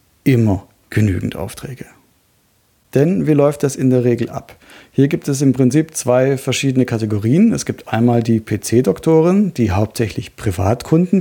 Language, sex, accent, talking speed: German, male, German, 145 wpm